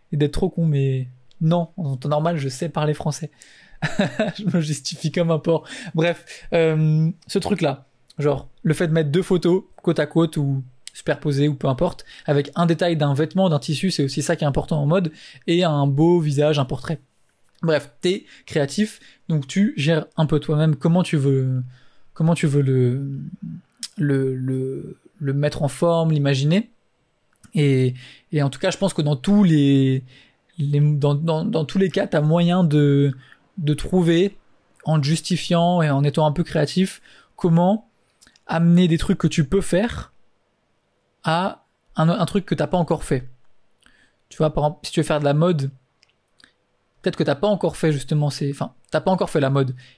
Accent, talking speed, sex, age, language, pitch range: French, 190 wpm, male, 20-39, French, 145-175 Hz